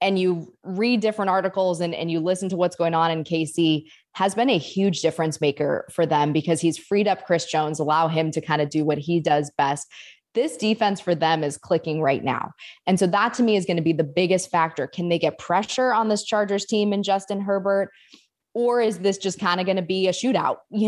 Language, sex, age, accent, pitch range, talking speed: English, female, 20-39, American, 155-190 Hz, 235 wpm